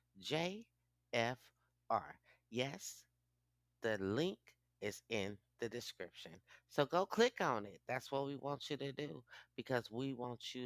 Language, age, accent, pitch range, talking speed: English, 30-49, American, 95-150 Hz, 145 wpm